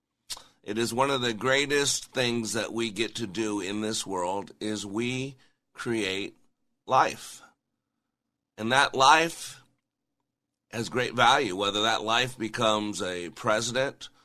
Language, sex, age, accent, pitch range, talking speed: English, male, 50-69, American, 105-125 Hz, 130 wpm